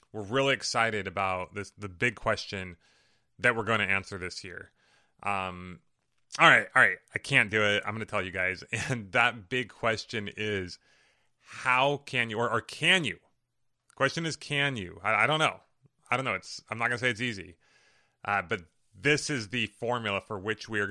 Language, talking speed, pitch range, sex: English, 200 wpm, 100-125 Hz, male